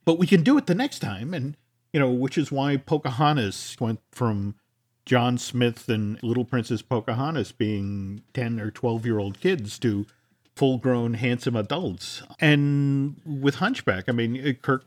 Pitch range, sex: 105-135 Hz, male